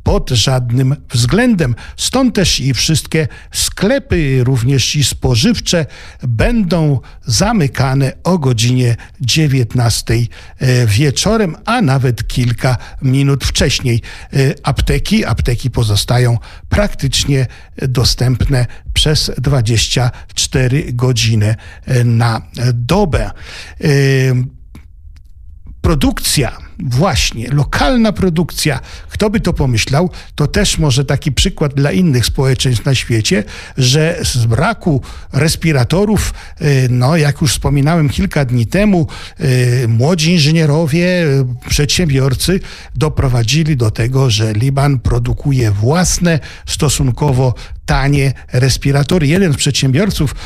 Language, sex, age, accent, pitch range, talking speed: Polish, male, 50-69, native, 115-155 Hz, 90 wpm